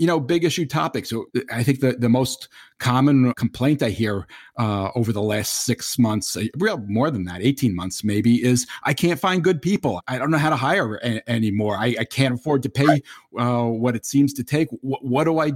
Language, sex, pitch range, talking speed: English, male, 115-135 Hz, 220 wpm